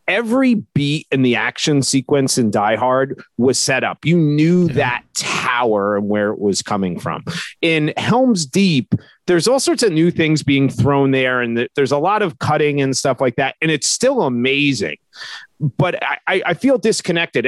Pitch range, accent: 125-170 Hz, American